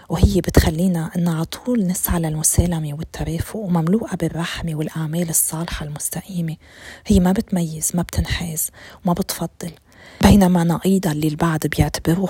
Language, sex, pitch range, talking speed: Arabic, female, 165-190 Hz, 125 wpm